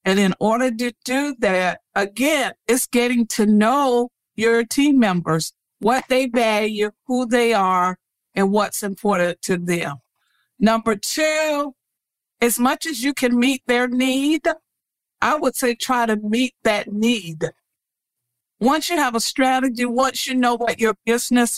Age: 50-69